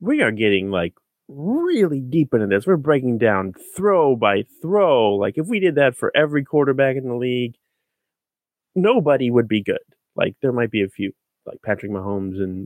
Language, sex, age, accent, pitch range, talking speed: English, male, 20-39, American, 110-170 Hz, 185 wpm